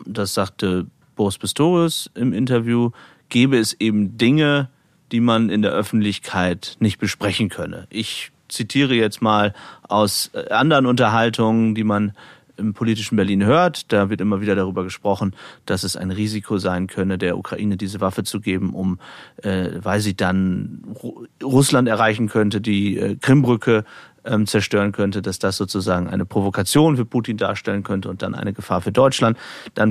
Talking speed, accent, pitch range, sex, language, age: 160 wpm, German, 95-115 Hz, male, German, 30-49